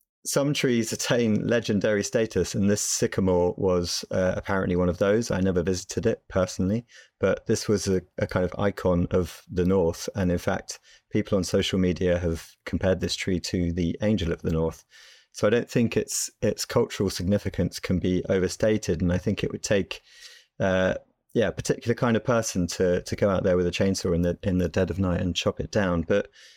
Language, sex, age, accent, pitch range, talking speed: English, male, 30-49, British, 85-105 Hz, 205 wpm